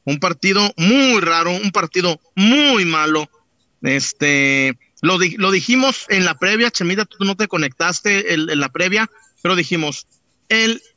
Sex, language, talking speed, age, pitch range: male, Spanish, 155 wpm, 40-59, 150-210 Hz